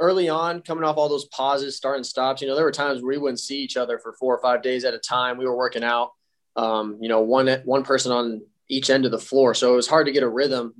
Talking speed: 290 wpm